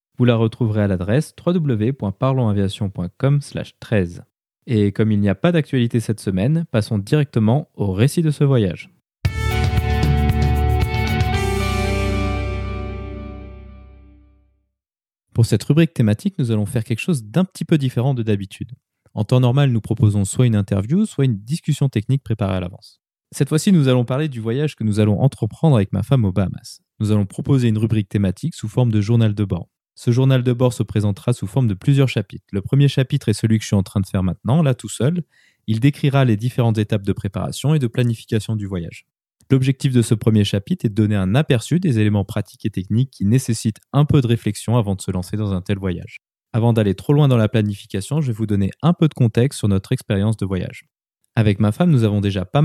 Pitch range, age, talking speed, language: 100-130 Hz, 20-39, 200 wpm, French